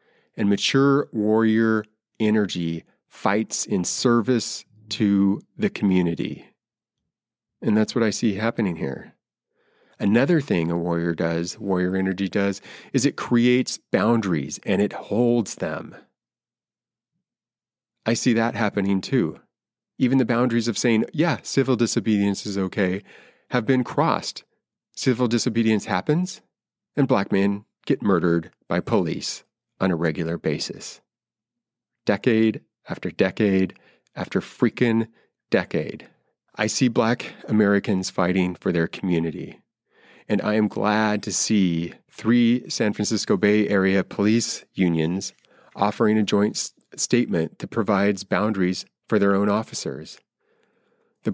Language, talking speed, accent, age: English, 120 wpm, American, 30-49